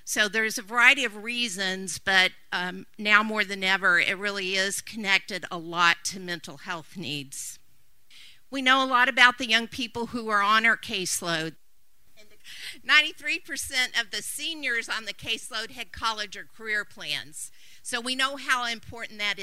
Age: 50-69